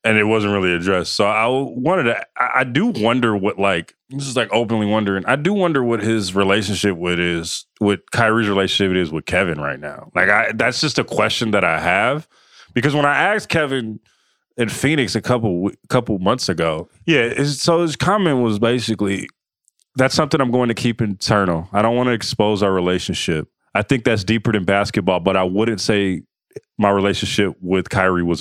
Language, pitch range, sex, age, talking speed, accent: English, 100-125 Hz, male, 30-49, 190 wpm, American